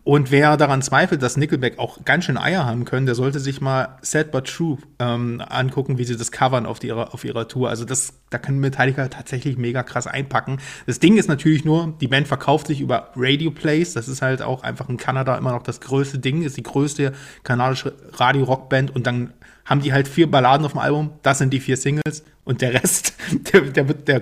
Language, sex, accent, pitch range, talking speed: German, male, German, 130-150 Hz, 220 wpm